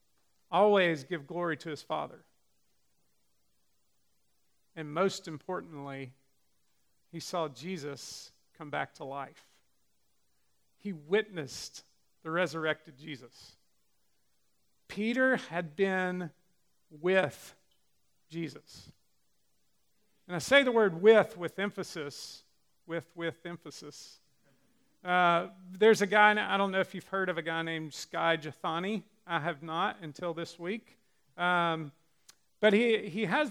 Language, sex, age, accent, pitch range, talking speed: English, male, 50-69, American, 160-200 Hz, 115 wpm